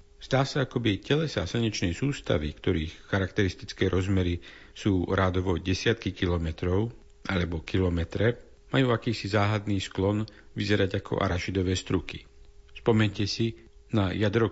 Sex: male